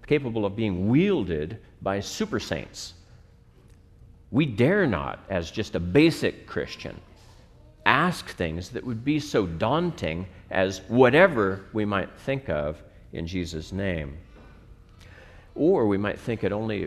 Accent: American